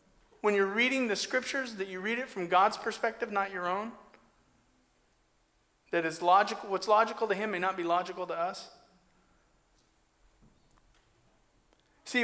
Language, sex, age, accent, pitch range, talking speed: English, male, 40-59, American, 190-235 Hz, 130 wpm